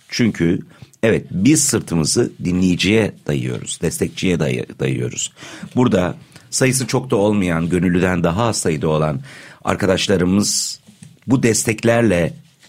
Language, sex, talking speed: Turkish, male, 105 wpm